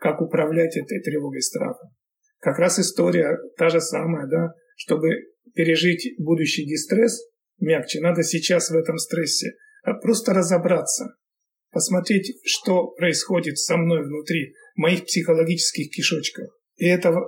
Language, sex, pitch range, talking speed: Russian, male, 160-195 Hz, 130 wpm